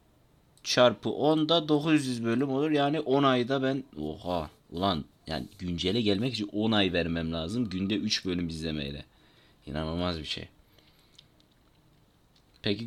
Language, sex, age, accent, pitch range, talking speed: Turkish, male, 30-49, native, 85-120 Hz, 125 wpm